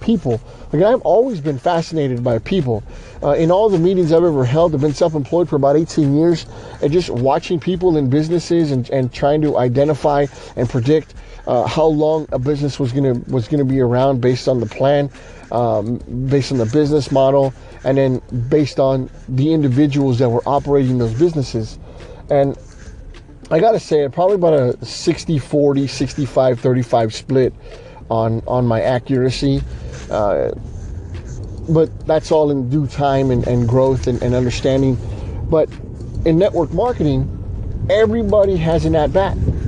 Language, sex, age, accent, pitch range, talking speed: English, male, 30-49, American, 125-165 Hz, 160 wpm